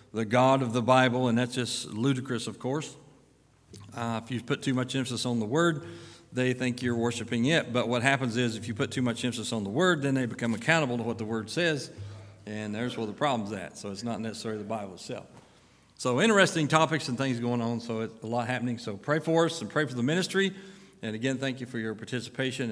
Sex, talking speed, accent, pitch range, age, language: male, 235 wpm, American, 110-145 Hz, 50-69, English